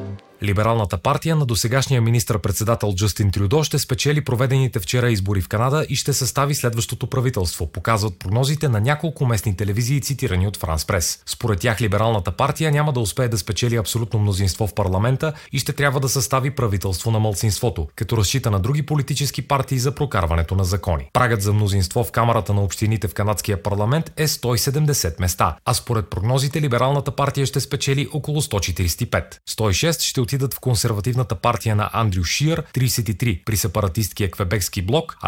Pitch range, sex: 105-140 Hz, male